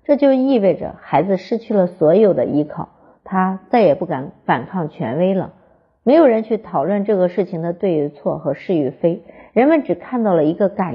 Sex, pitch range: female, 180-230 Hz